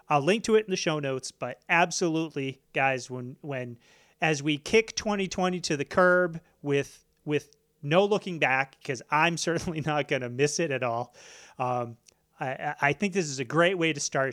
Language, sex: English, male